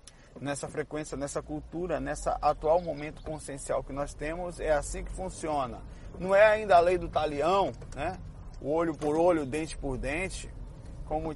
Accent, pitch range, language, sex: Brazilian, 130-160 Hz, Portuguese, male